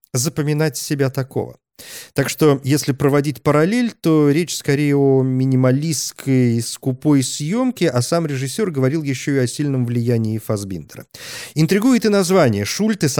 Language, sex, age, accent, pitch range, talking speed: Russian, male, 40-59, native, 125-165 Hz, 130 wpm